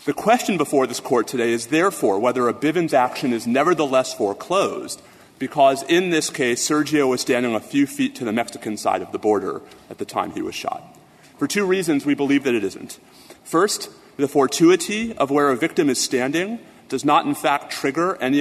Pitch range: 130-175 Hz